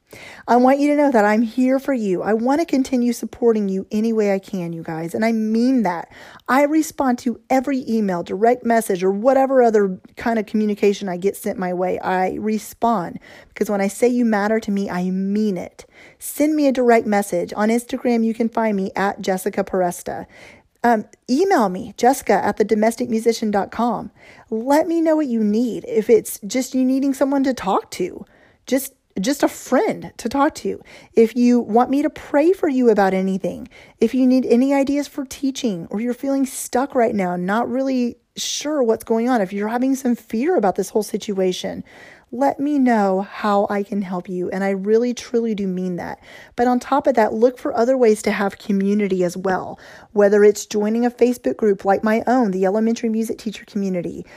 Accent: American